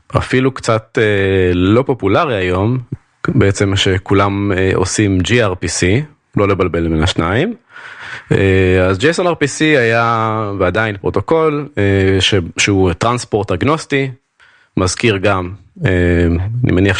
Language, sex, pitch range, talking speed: Hebrew, male, 95-130 Hz, 90 wpm